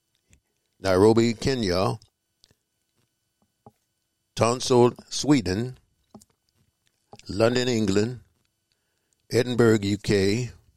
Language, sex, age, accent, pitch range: English, male, 60-79, American, 95-115 Hz